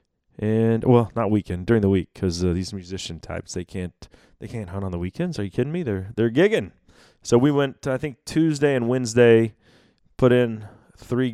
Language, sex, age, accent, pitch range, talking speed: English, male, 30-49, American, 100-130 Hz, 200 wpm